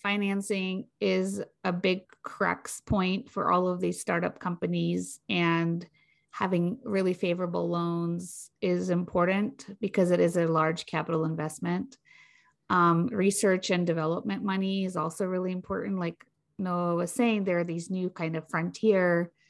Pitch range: 165-195 Hz